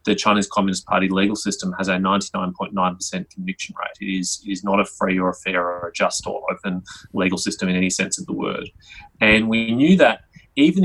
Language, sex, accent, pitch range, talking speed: English, male, Australian, 95-110 Hz, 210 wpm